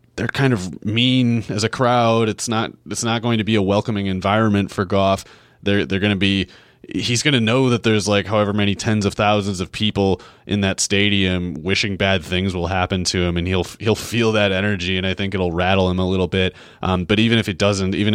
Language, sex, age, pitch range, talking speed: English, male, 30-49, 90-105 Hz, 230 wpm